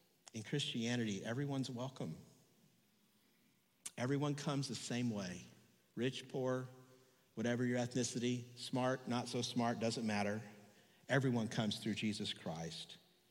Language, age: English, 50-69